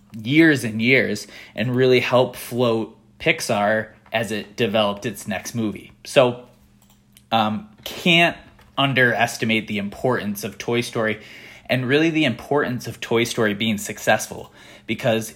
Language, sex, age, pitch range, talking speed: English, male, 20-39, 105-125 Hz, 130 wpm